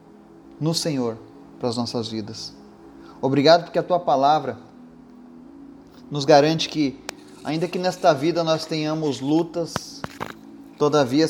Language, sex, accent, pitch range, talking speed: Portuguese, male, Brazilian, 110-170 Hz, 115 wpm